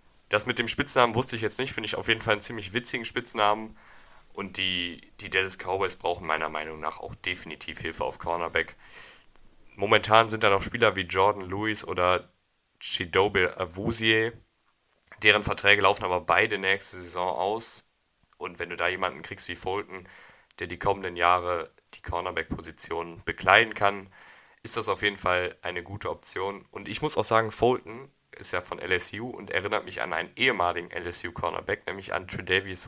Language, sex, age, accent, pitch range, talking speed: German, male, 10-29, German, 90-115 Hz, 175 wpm